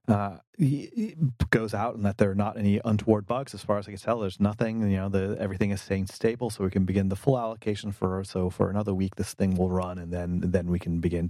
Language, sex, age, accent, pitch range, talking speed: English, male, 30-49, American, 90-105 Hz, 260 wpm